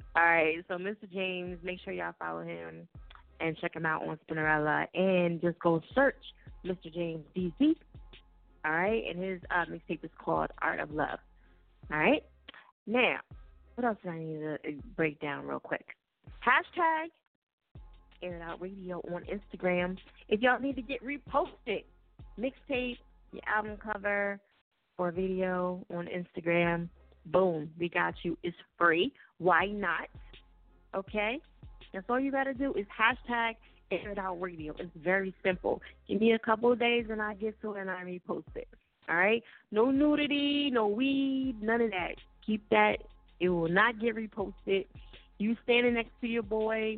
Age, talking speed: 20-39, 165 wpm